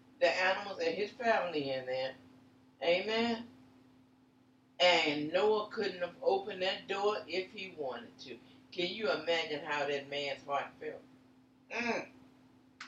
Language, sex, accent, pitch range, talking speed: English, female, American, 145-195 Hz, 130 wpm